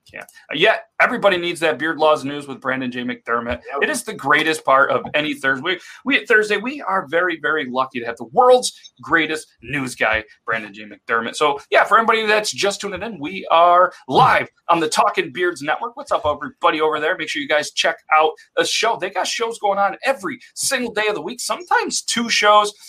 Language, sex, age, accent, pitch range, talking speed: English, male, 30-49, American, 140-220 Hz, 215 wpm